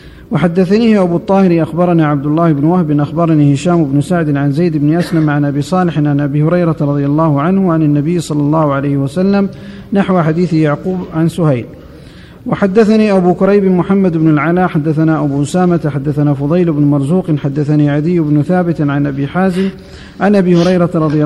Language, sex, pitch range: Arabic, male, 155-180 Hz